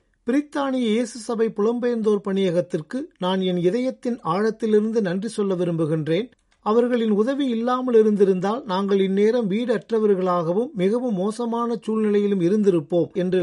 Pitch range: 180-215 Hz